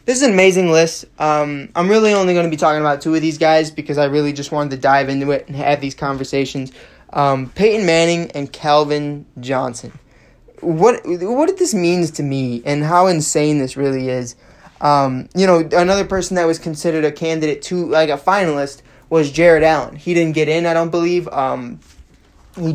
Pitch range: 145-170 Hz